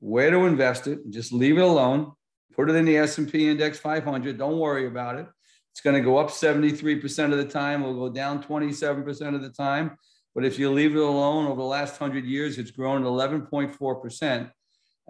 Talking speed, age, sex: 195 wpm, 50-69, male